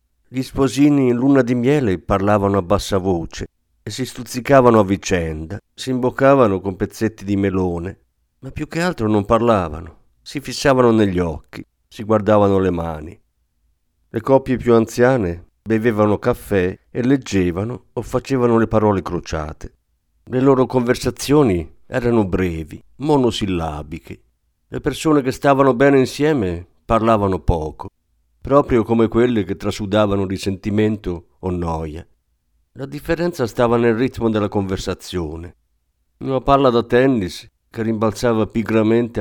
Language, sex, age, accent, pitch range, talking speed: Italian, male, 50-69, native, 90-125 Hz, 130 wpm